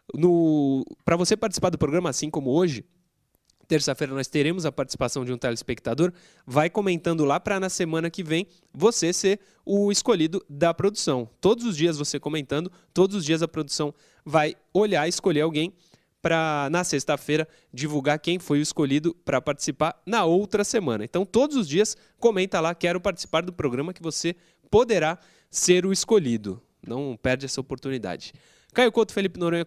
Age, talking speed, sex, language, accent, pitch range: 20-39, 165 wpm, male, Portuguese, Brazilian, 145-185 Hz